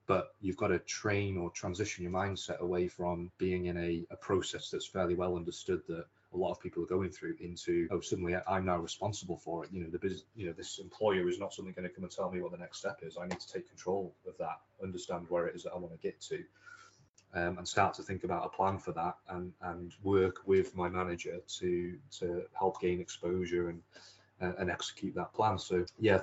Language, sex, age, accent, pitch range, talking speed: English, male, 30-49, British, 90-95 Hz, 240 wpm